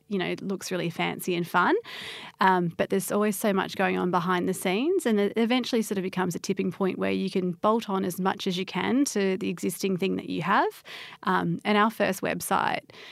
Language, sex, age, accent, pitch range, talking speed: English, female, 30-49, Australian, 180-205 Hz, 230 wpm